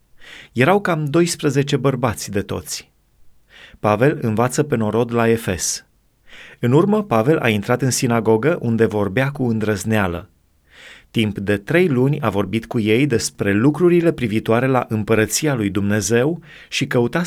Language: Romanian